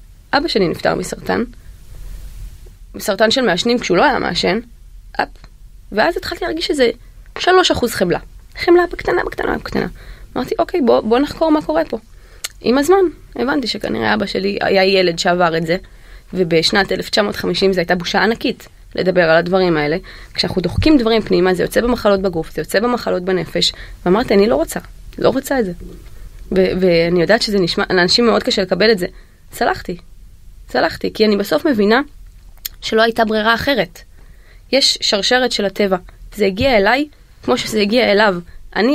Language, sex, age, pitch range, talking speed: Hebrew, female, 20-39, 185-250 Hz, 140 wpm